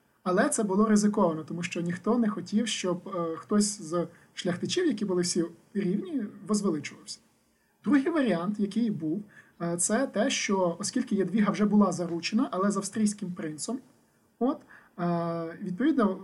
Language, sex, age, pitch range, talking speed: Ukrainian, male, 20-39, 170-215 Hz, 145 wpm